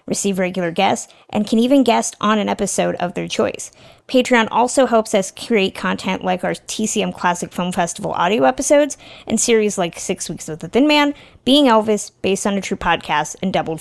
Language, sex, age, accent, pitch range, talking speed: English, female, 20-39, American, 185-220 Hz, 195 wpm